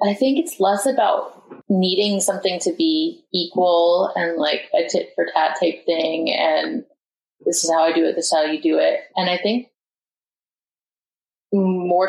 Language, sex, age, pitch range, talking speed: English, female, 20-39, 160-180 Hz, 175 wpm